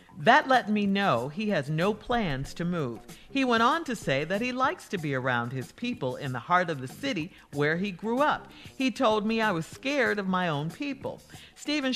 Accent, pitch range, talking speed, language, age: American, 165-240 Hz, 220 wpm, English, 50-69